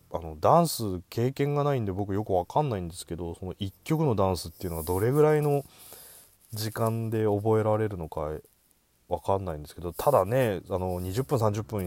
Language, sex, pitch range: Japanese, male, 85-120 Hz